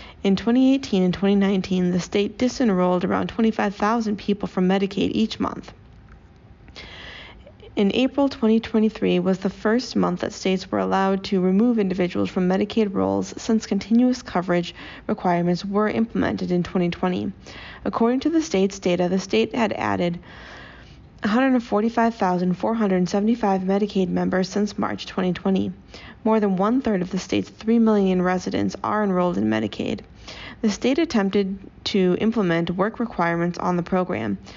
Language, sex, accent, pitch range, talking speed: English, female, American, 180-220 Hz, 135 wpm